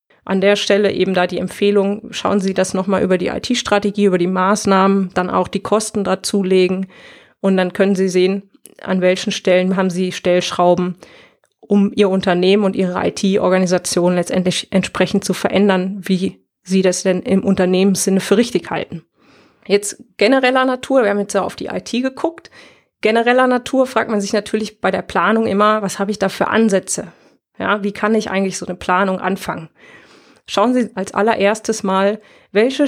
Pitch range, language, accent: 190-220 Hz, German, German